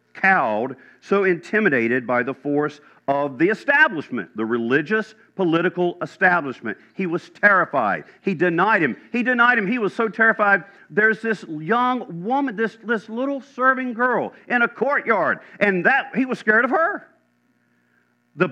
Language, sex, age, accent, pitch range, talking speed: English, male, 50-69, American, 135-215 Hz, 150 wpm